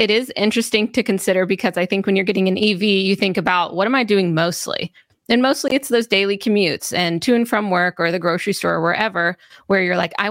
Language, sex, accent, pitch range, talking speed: English, female, American, 170-205 Hz, 245 wpm